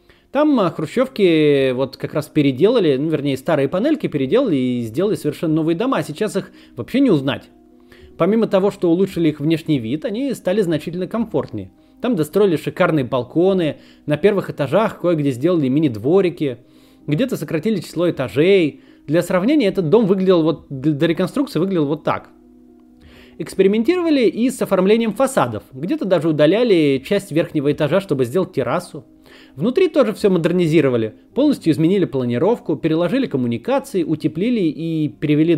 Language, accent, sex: Russian, native, male